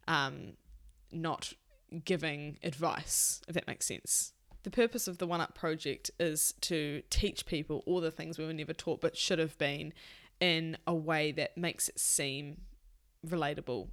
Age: 10-29